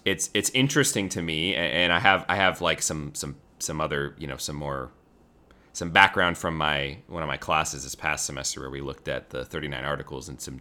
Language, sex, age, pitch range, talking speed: English, male, 30-49, 75-90 Hz, 225 wpm